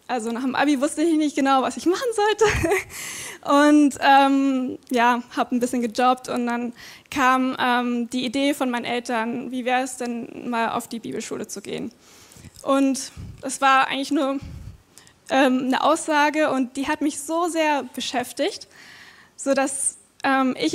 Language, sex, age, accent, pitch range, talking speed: German, female, 20-39, German, 250-295 Hz, 160 wpm